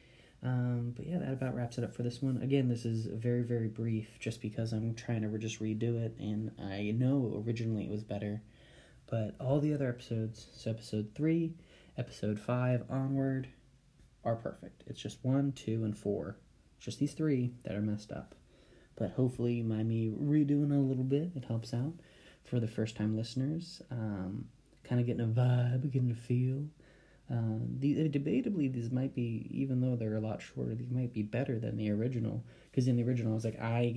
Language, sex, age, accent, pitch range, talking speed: English, male, 20-39, American, 110-130 Hz, 200 wpm